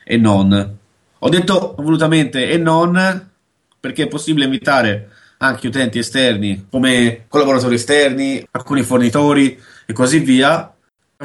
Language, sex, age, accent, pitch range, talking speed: Italian, male, 20-39, native, 110-140 Hz, 125 wpm